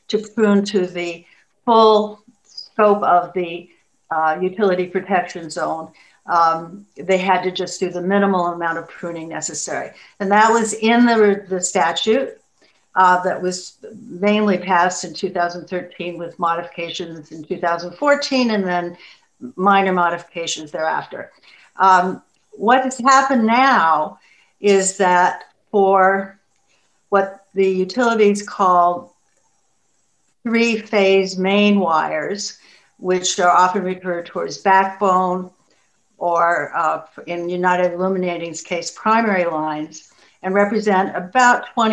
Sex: female